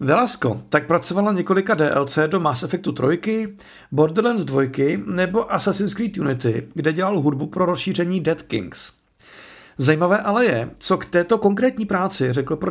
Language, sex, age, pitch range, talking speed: Czech, male, 50-69, 155-200 Hz, 150 wpm